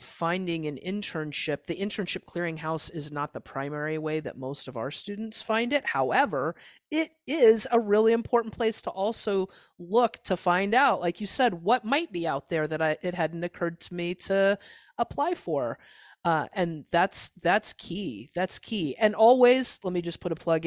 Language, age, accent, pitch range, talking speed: English, 30-49, American, 175-230 Hz, 185 wpm